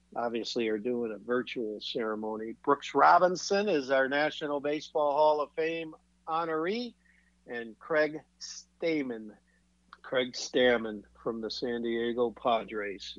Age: 50-69